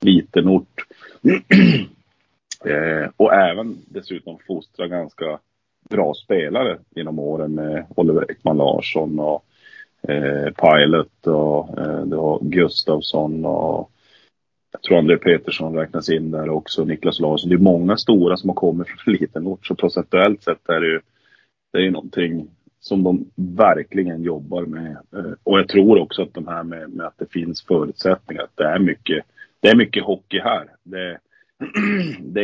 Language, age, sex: Swedish, 30-49, male